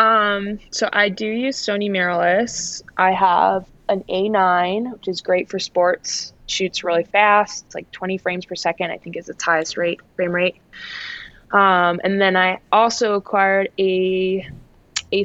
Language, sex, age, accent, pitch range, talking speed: English, female, 20-39, American, 165-200 Hz, 165 wpm